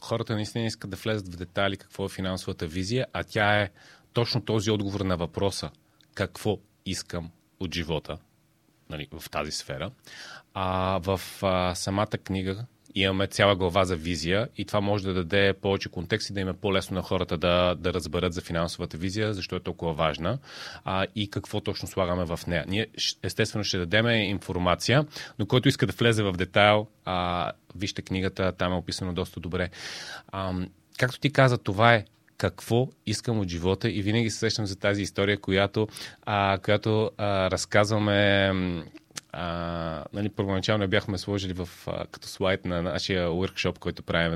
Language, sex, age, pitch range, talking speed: Bulgarian, male, 30-49, 90-110 Hz, 165 wpm